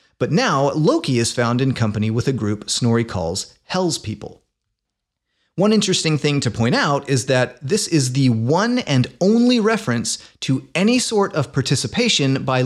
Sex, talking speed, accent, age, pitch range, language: male, 165 wpm, American, 30-49, 115-155 Hz, English